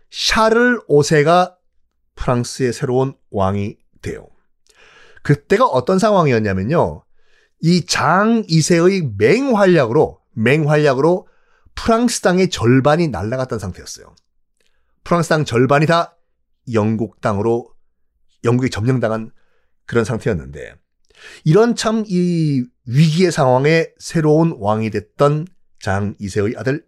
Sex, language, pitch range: male, Korean, 115-180 Hz